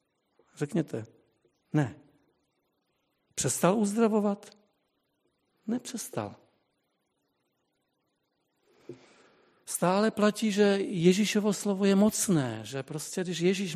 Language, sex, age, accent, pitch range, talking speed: Czech, male, 50-69, Polish, 140-185 Hz, 70 wpm